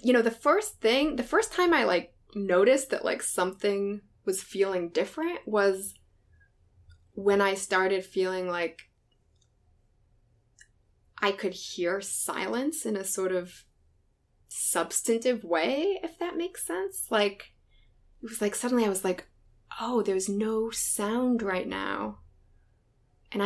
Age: 20-39